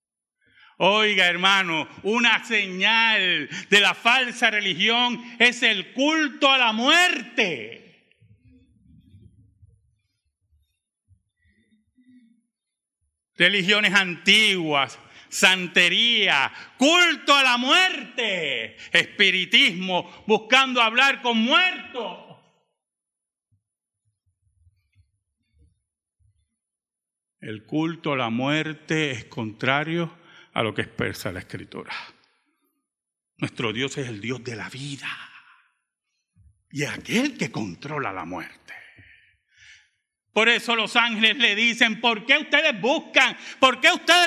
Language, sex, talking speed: Spanish, male, 90 wpm